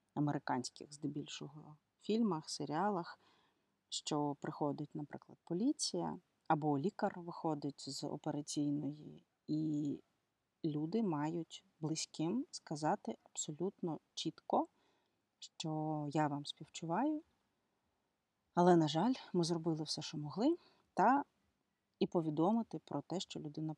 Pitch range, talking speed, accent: 150-180 Hz, 100 wpm, native